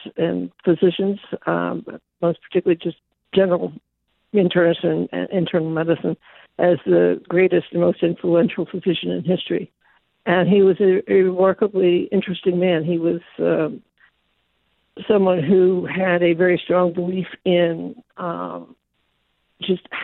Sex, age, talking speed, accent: female, 60-79, 125 wpm, American